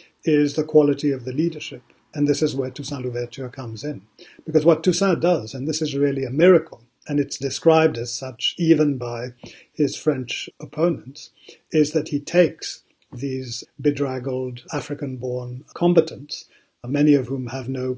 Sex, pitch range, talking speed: male, 130-150 Hz, 155 wpm